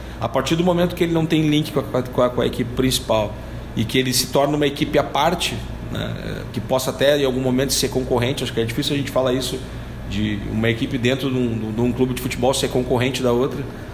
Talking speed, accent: 250 wpm, Brazilian